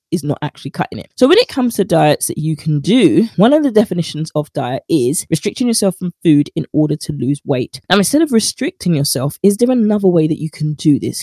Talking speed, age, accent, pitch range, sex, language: 240 wpm, 20-39, British, 155-205 Hz, female, English